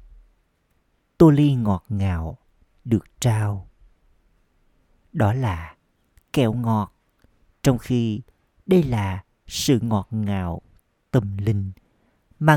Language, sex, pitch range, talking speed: Vietnamese, male, 95-130 Hz, 95 wpm